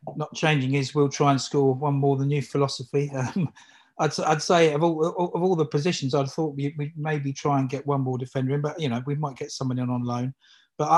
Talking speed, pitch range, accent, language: 250 wpm, 140-170 Hz, British, English